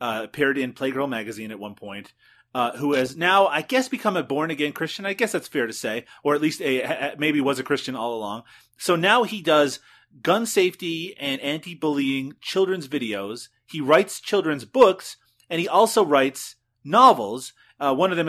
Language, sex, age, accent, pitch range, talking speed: English, male, 30-49, American, 130-185 Hz, 190 wpm